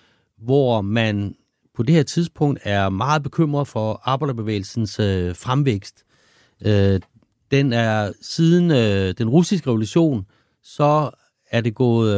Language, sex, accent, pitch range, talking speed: Danish, male, native, 105-145 Hz, 110 wpm